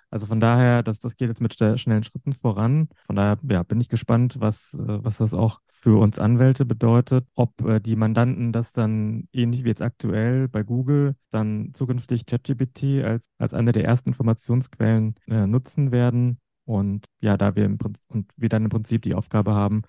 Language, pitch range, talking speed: German, 105-125 Hz, 190 wpm